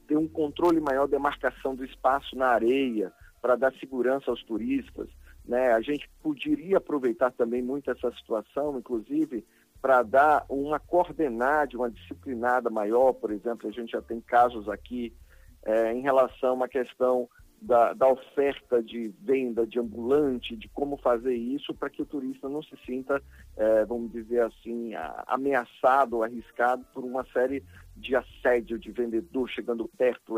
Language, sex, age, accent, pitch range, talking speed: Portuguese, male, 50-69, Brazilian, 110-135 Hz, 155 wpm